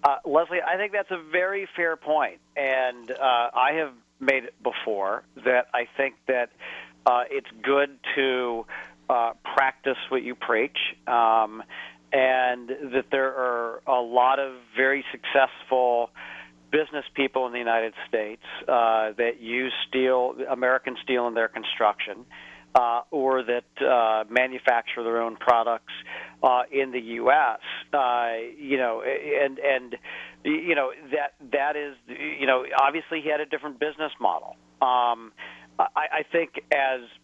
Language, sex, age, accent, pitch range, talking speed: English, male, 40-59, American, 120-140 Hz, 145 wpm